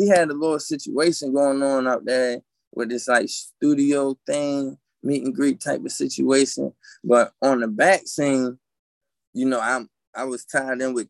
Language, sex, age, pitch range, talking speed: English, male, 20-39, 120-140 Hz, 180 wpm